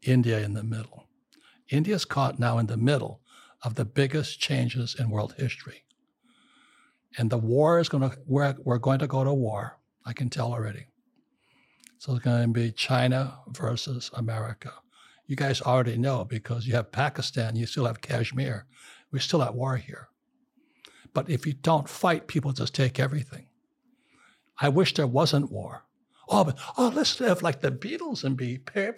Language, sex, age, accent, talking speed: English, male, 60-79, American, 170 wpm